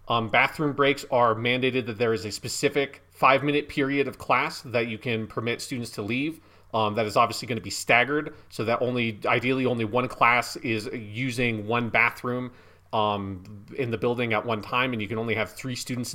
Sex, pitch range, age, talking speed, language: male, 110-125 Hz, 30-49, 200 wpm, English